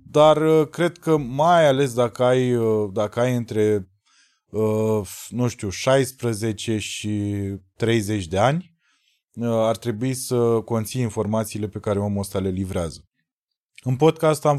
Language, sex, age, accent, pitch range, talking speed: Romanian, male, 20-39, native, 110-140 Hz, 125 wpm